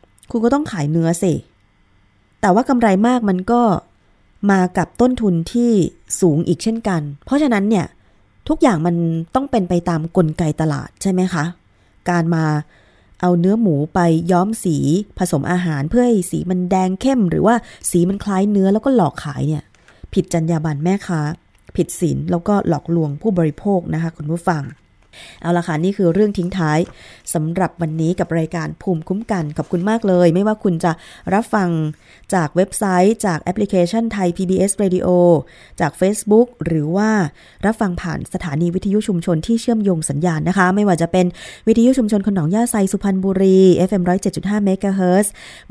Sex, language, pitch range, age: female, Thai, 165-205 Hz, 20-39